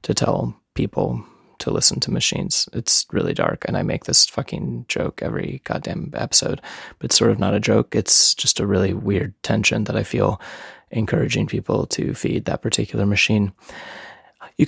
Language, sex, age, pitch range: English, male, 20-39, 100-125 Hz